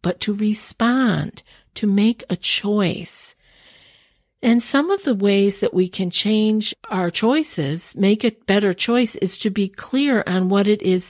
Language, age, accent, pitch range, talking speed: English, 50-69, American, 165-215 Hz, 160 wpm